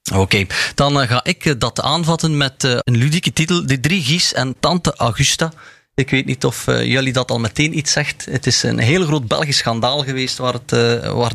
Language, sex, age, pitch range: Dutch, male, 30-49, 115-145 Hz